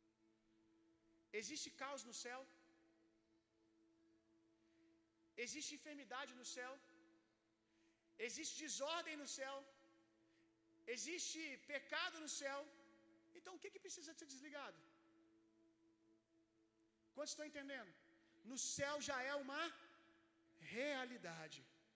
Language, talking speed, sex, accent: Gujarati, 90 wpm, male, Brazilian